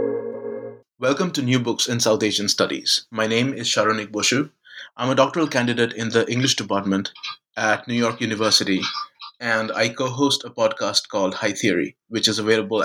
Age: 30-49